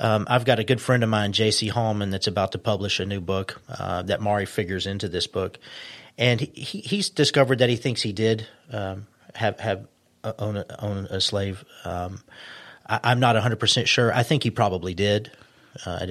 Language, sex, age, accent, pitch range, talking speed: English, male, 40-59, American, 100-115 Hz, 210 wpm